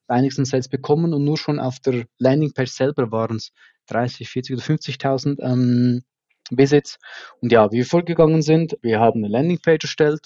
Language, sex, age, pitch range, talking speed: German, male, 20-39, 125-145 Hz, 165 wpm